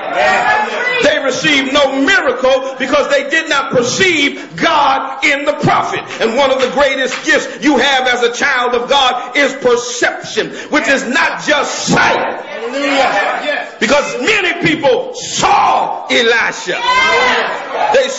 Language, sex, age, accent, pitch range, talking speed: English, male, 40-59, American, 265-385 Hz, 130 wpm